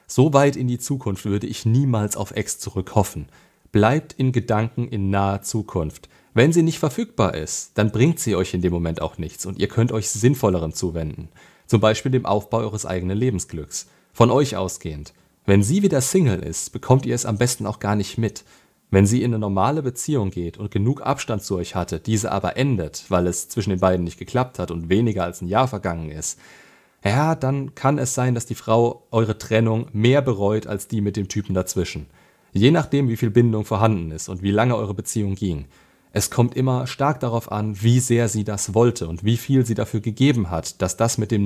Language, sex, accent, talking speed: German, male, German, 210 wpm